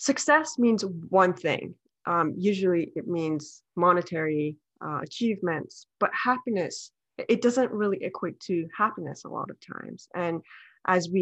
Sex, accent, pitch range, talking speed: female, American, 170-215 Hz, 140 wpm